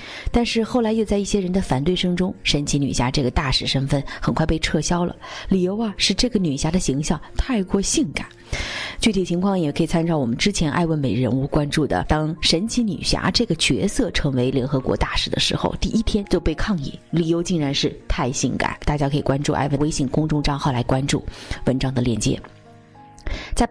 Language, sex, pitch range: Chinese, female, 140-195 Hz